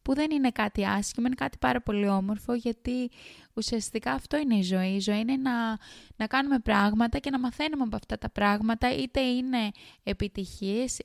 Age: 20-39